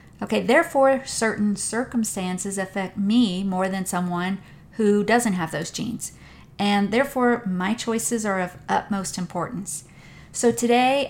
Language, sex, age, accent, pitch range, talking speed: English, female, 40-59, American, 185-225 Hz, 130 wpm